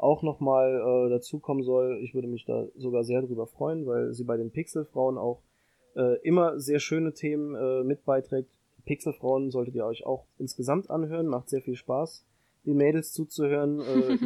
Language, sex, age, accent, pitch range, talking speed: German, male, 20-39, German, 130-150 Hz, 175 wpm